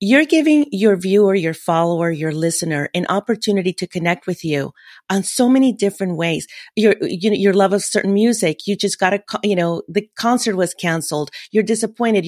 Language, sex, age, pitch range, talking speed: English, female, 40-59, 180-225 Hz, 190 wpm